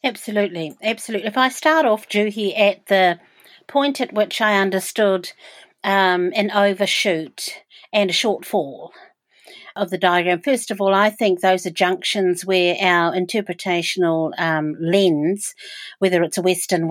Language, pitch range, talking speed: English, 175-210 Hz, 140 wpm